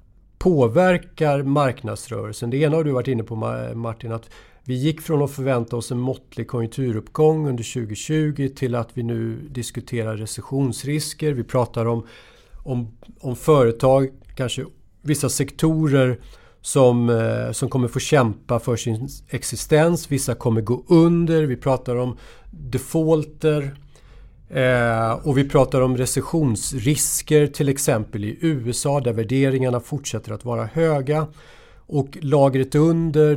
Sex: male